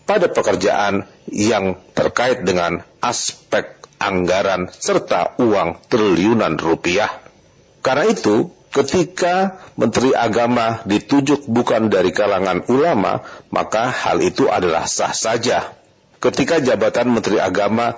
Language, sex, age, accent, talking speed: Indonesian, male, 50-69, native, 105 wpm